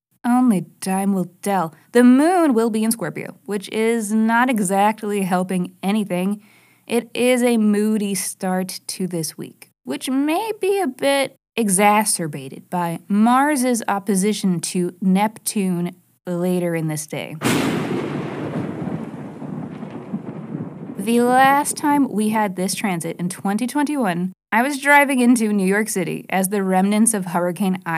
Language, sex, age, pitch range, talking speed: English, female, 20-39, 180-225 Hz, 130 wpm